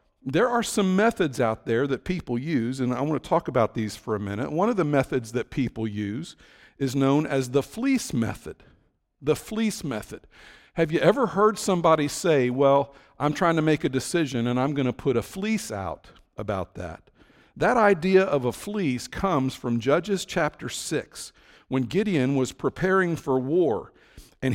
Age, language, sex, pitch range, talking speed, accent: 50-69, English, male, 130-185 Hz, 185 wpm, American